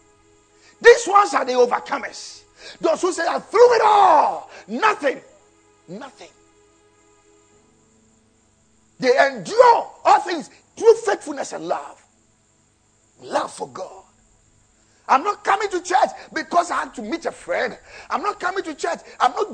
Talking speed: 135 wpm